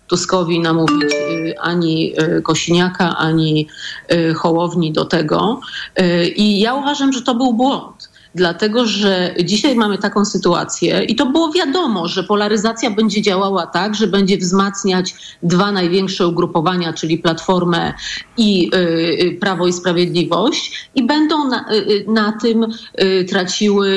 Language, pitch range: Polish, 175-220 Hz